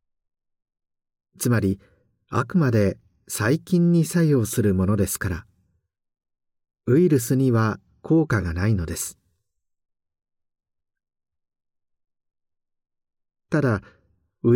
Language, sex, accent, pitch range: Japanese, male, native, 95-135 Hz